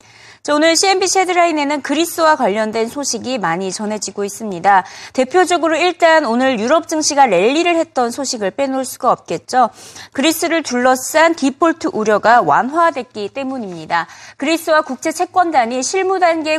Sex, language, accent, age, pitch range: female, Korean, native, 30-49, 210-325 Hz